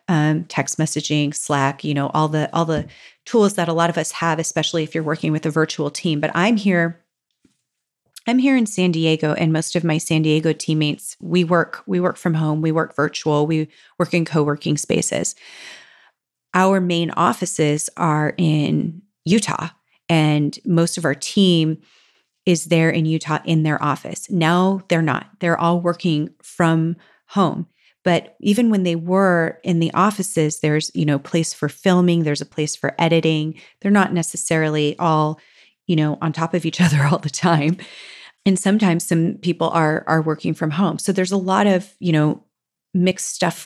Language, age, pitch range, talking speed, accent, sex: English, 30-49, 155-180 Hz, 180 wpm, American, female